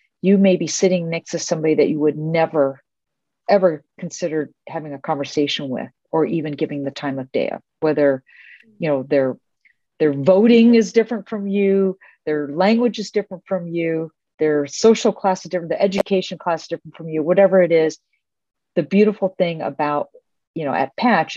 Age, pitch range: 50-69, 150-185 Hz